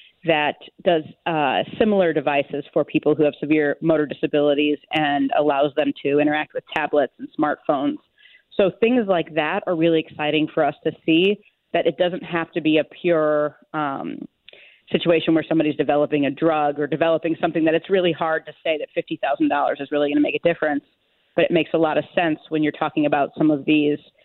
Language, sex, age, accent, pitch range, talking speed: English, female, 30-49, American, 150-170 Hz, 195 wpm